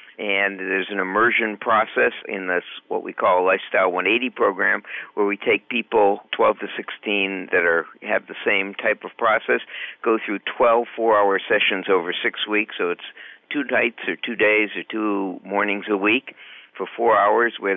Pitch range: 100-120 Hz